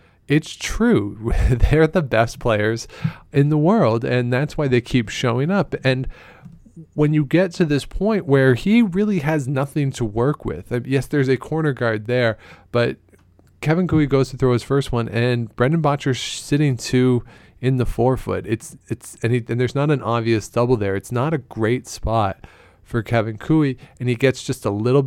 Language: English